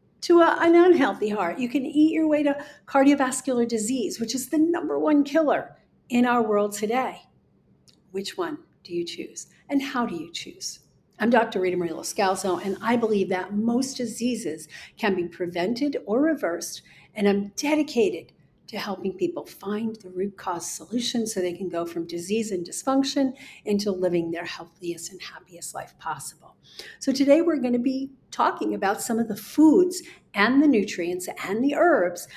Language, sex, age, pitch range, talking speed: English, female, 50-69, 195-270 Hz, 170 wpm